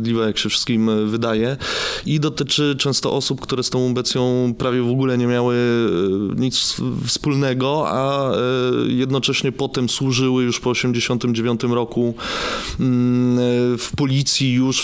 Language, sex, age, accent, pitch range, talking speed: Polish, male, 20-39, native, 115-135 Hz, 120 wpm